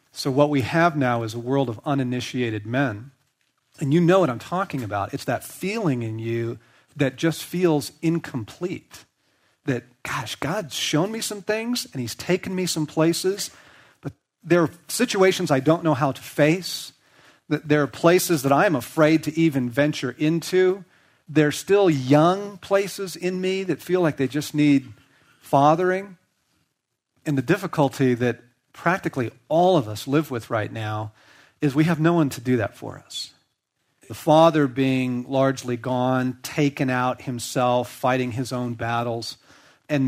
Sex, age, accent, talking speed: male, 40-59, American, 165 wpm